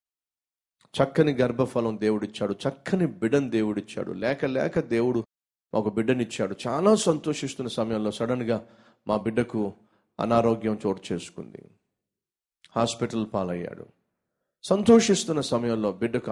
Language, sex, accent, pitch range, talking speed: Telugu, male, native, 110-150 Hz, 90 wpm